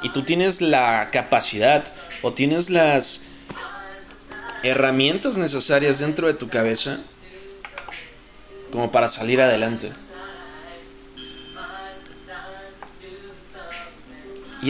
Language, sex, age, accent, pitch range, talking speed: Spanish, male, 20-39, Mexican, 115-145 Hz, 80 wpm